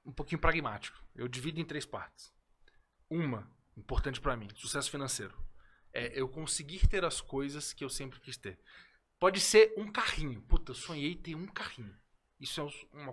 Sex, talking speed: male, 175 wpm